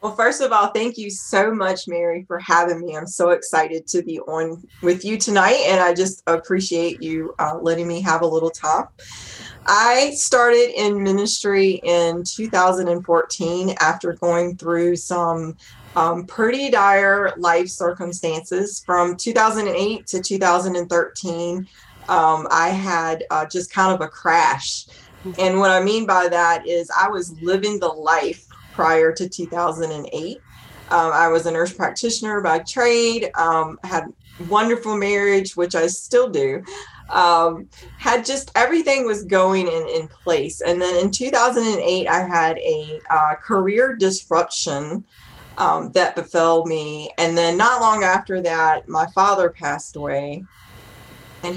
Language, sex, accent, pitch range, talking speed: English, female, American, 165-200 Hz, 145 wpm